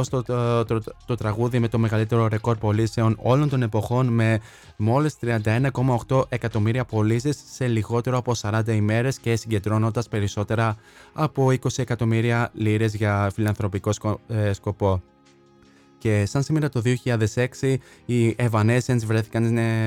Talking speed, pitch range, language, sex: 135 wpm, 105-120 Hz, Greek, male